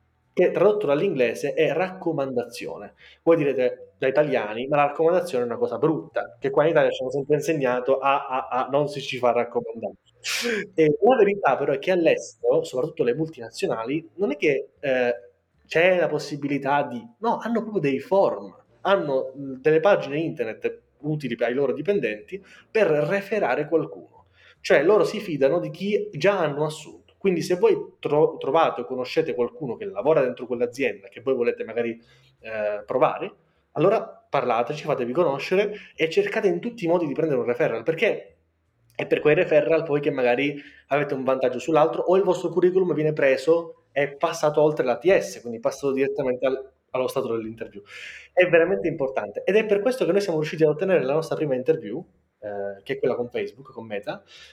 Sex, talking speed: male, 180 wpm